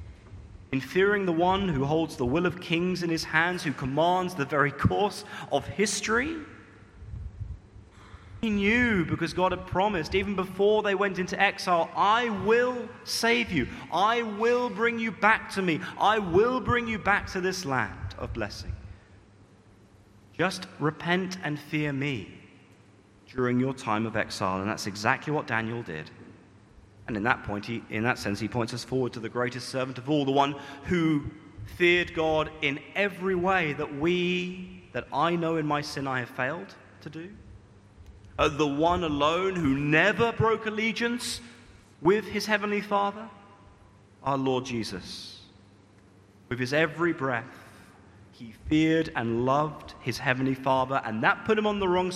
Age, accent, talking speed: 30-49, British, 160 wpm